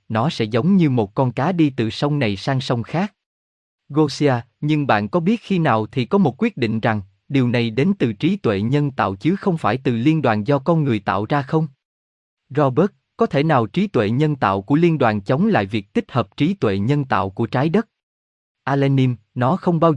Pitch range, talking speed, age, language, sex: 110-155 Hz, 220 wpm, 20-39, Vietnamese, male